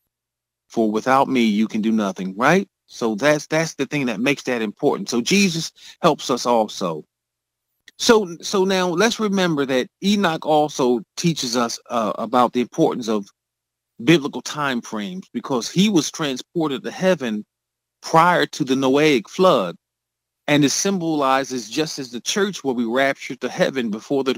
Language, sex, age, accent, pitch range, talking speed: English, male, 40-59, American, 125-165 Hz, 160 wpm